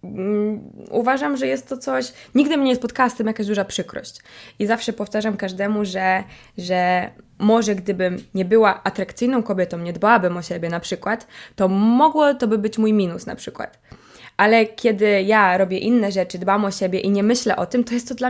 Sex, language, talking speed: female, Polish, 195 wpm